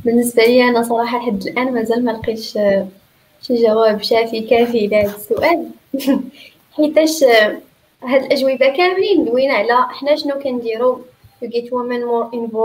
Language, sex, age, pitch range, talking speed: Arabic, female, 20-39, 225-275 Hz, 135 wpm